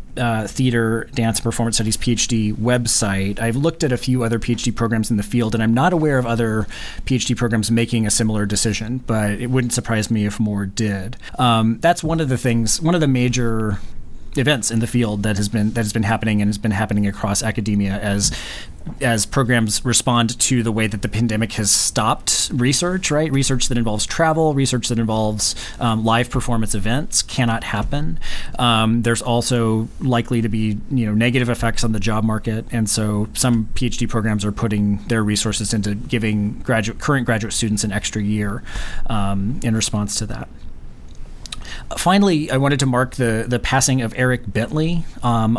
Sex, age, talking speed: male, 30-49, 185 wpm